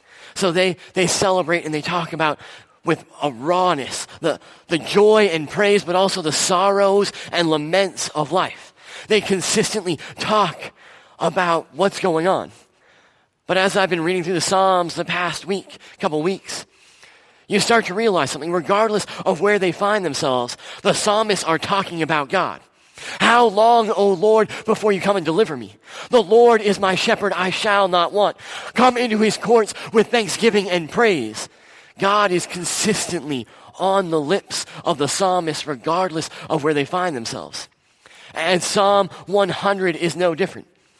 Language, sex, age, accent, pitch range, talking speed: English, male, 30-49, American, 170-205 Hz, 160 wpm